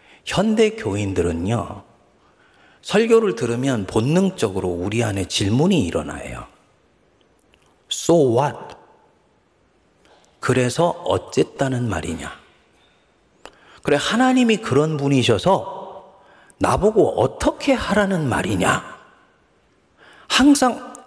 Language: Korean